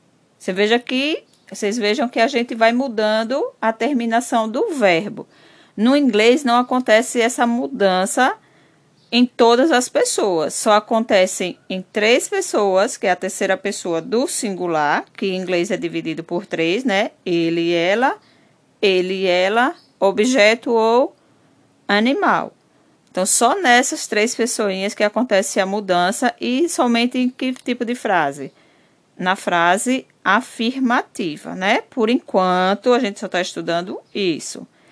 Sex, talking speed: female, 135 wpm